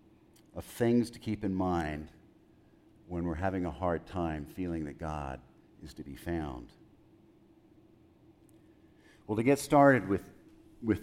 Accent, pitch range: American, 85-105 Hz